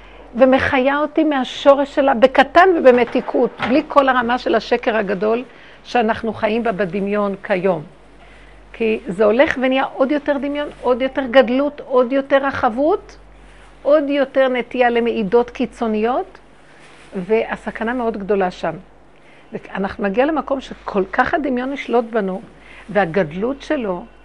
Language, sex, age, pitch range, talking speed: Hebrew, female, 50-69, 225-285 Hz, 120 wpm